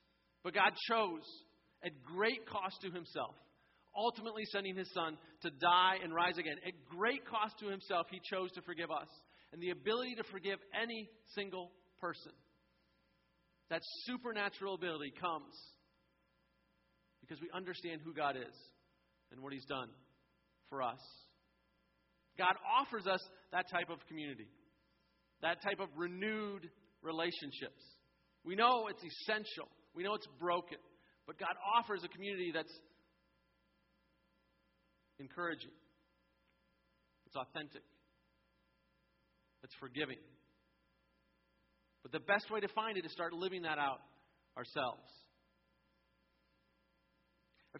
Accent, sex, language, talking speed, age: American, male, English, 120 wpm, 40-59